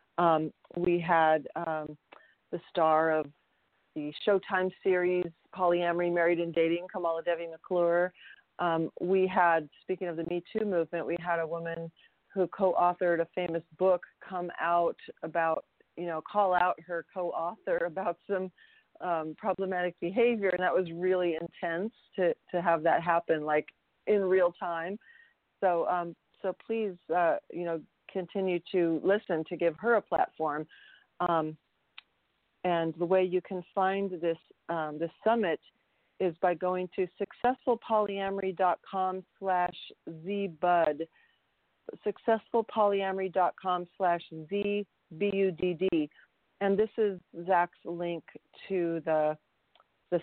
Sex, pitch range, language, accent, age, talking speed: female, 165-190 Hz, English, American, 40-59, 135 wpm